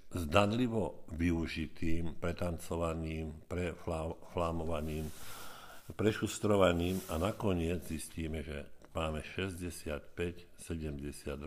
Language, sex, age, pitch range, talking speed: Slovak, male, 60-79, 75-90 Hz, 60 wpm